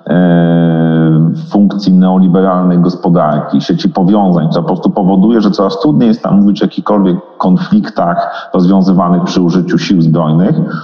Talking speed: 125 wpm